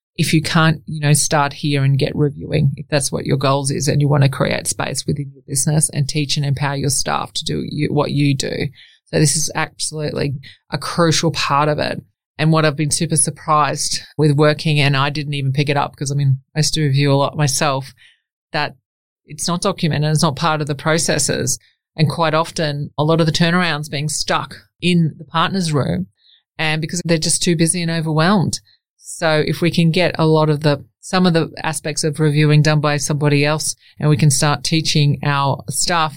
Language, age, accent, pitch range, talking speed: English, 20-39, Australian, 145-165 Hz, 210 wpm